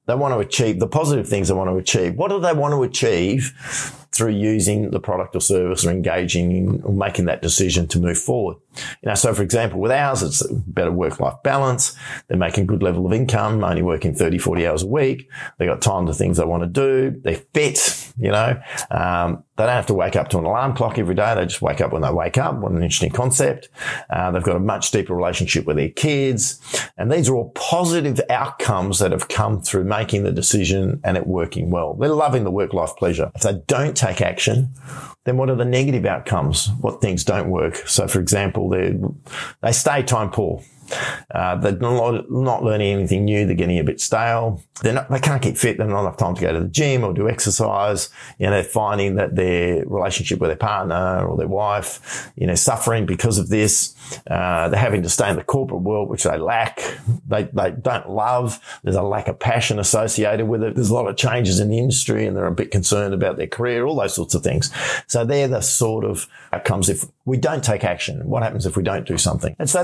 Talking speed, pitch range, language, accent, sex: 230 wpm, 95-130 Hz, English, Australian, male